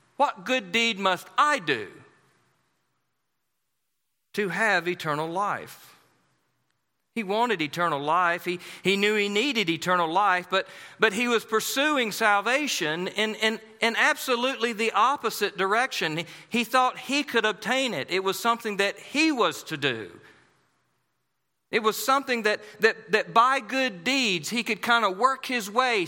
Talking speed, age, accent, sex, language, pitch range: 145 wpm, 40-59, American, male, English, 205-255 Hz